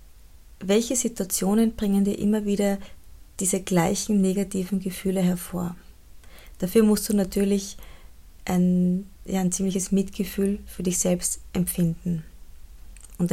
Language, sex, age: German, female, 20-39